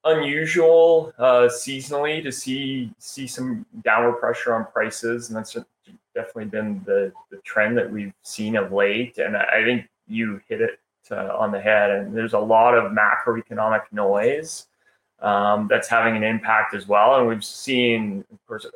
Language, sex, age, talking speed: English, male, 20-39, 165 wpm